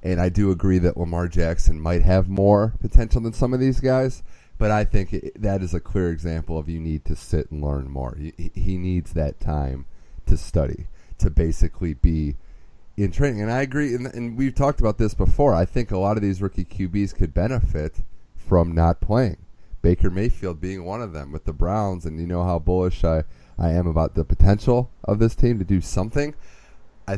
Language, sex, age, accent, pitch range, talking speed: English, male, 30-49, American, 80-105 Hz, 210 wpm